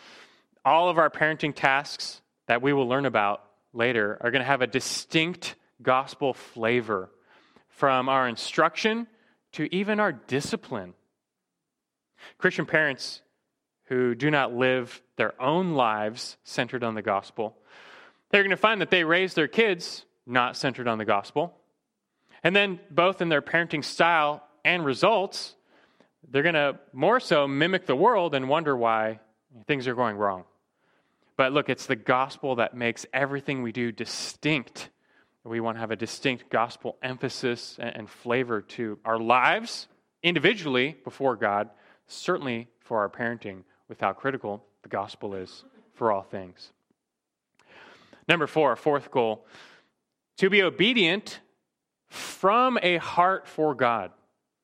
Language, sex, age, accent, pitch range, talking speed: English, male, 30-49, American, 115-155 Hz, 145 wpm